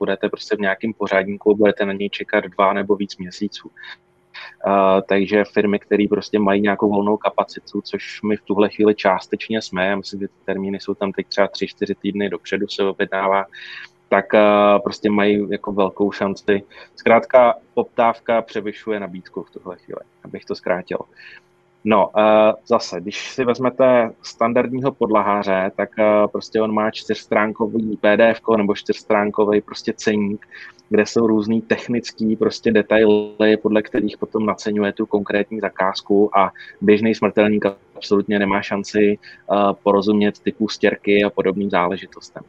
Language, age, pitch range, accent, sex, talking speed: Czech, 20-39, 100-110 Hz, native, male, 145 wpm